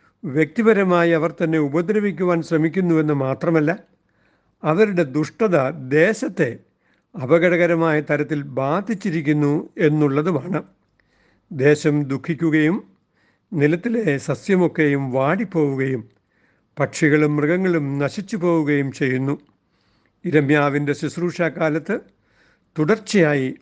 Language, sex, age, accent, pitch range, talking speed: Malayalam, male, 60-79, native, 145-180 Hz, 65 wpm